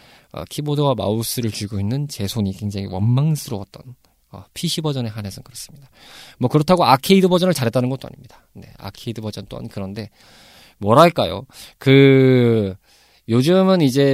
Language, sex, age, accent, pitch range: Korean, male, 20-39, native, 115-170 Hz